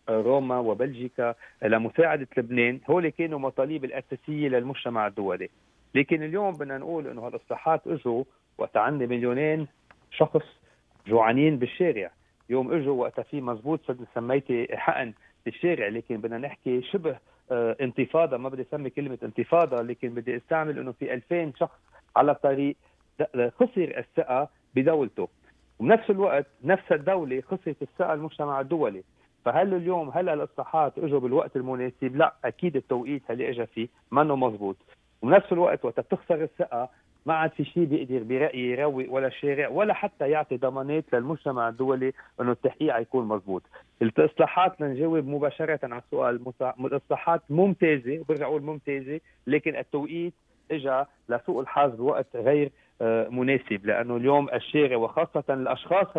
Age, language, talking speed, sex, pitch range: 40-59, Arabic, 130 wpm, male, 125-155 Hz